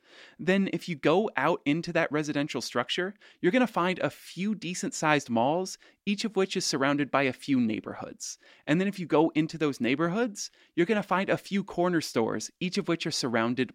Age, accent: 30-49, American